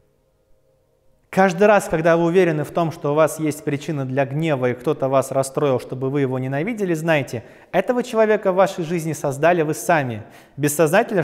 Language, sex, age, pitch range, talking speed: Russian, male, 20-39, 140-185 Hz, 170 wpm